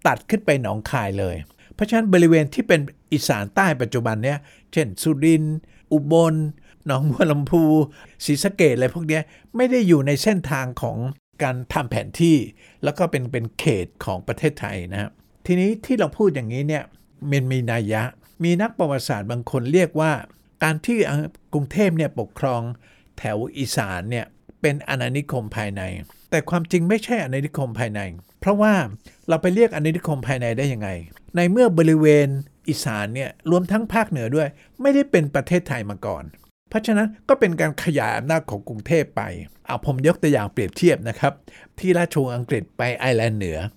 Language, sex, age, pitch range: Thai, male, 60-79, 120-175 Hz